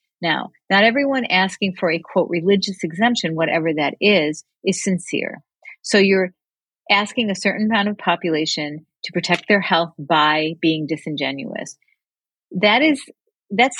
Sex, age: female, 40-59